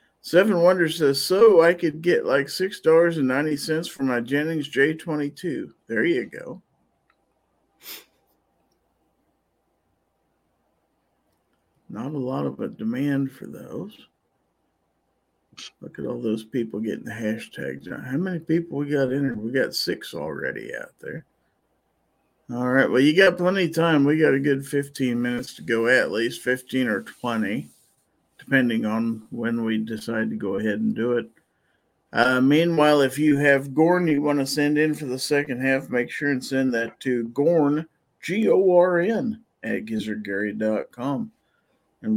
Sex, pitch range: male, 120-160 Hz